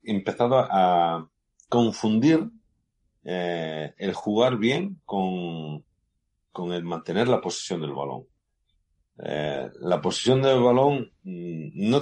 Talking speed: 105 wpm